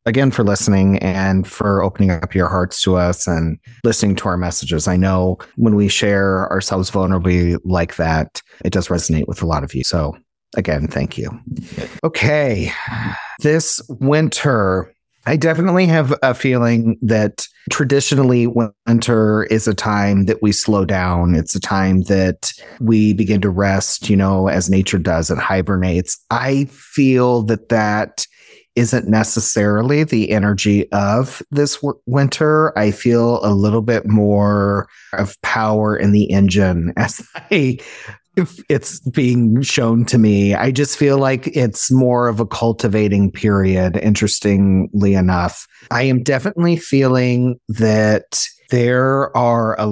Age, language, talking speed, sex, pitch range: 30-49, English, 140 wpm, male, 95-125 Hz